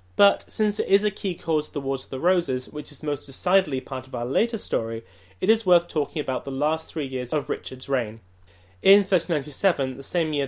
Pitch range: 125-170 Hz